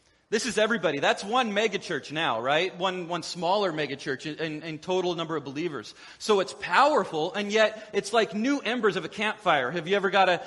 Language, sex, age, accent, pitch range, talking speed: English, male, 30-49, American, 165-205 Hz, 210 wpm